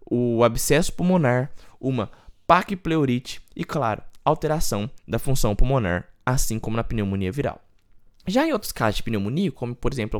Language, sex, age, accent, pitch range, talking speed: Portuguese, male, 20-39, Brazilian, 110-150 Hz, 145 wpm